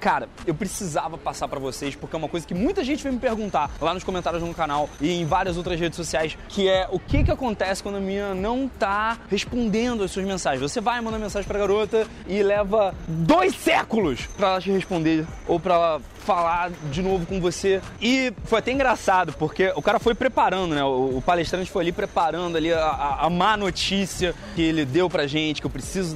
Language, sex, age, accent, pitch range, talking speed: Portuguese, male, 20-39, Brazilian, 160-230 Hz, 215 wpm